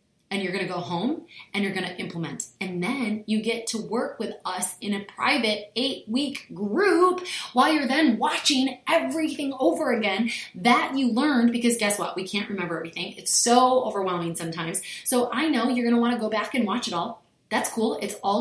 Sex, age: female, 20-39